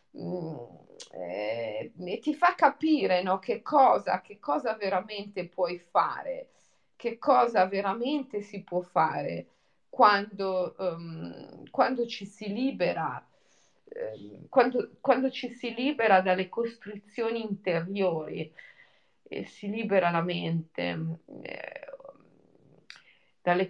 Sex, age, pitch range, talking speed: female, 30-49, 185-245 Hz, 100 wpm